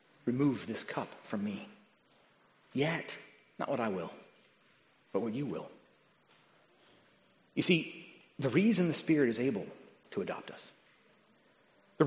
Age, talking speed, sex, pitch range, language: 30-49, 130 wpm, male, 150-205 Hz, English